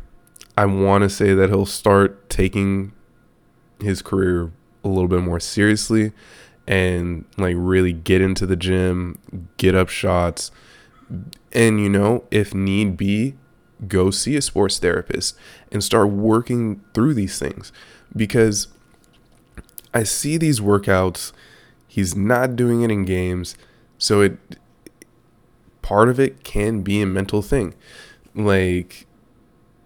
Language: English